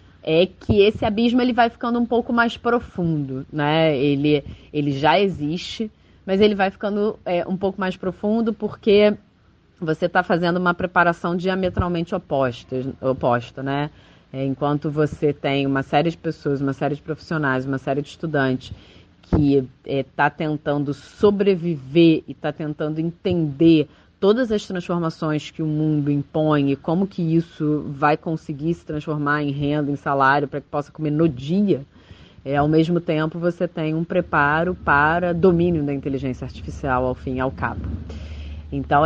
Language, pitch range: Portuguese, 135-175 Hz